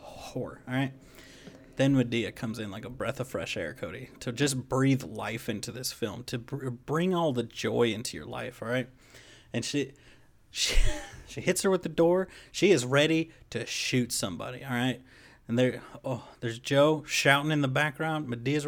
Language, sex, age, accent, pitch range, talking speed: English, male, 30-49, American, 120-145 Hz, 190 wpm